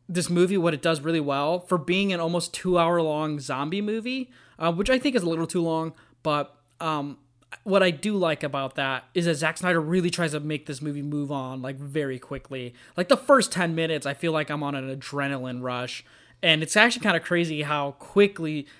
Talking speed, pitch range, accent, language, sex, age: 220 wpm, 140-170 Hz, American, English, male, 20-39